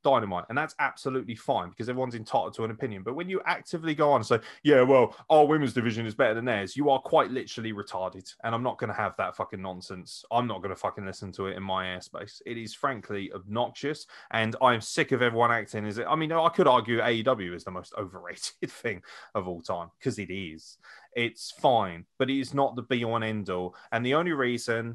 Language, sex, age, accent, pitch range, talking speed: English, male, 20-39, British, 100-130 Hz, 230 wpm